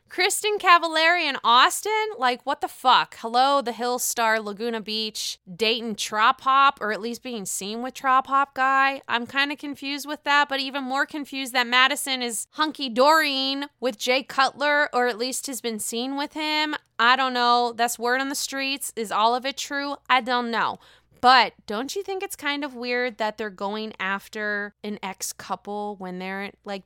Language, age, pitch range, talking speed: English, 20-39, 205-275 Hz, 190 wpm